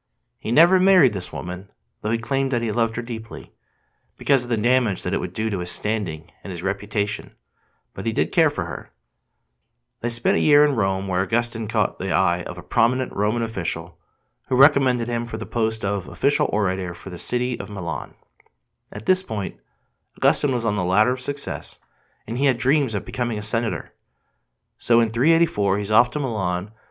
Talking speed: 195 wpm